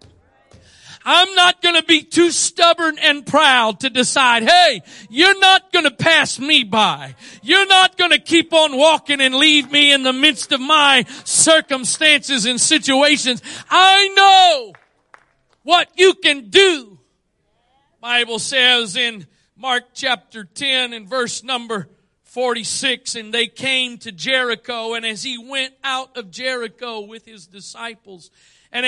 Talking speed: 145 wpm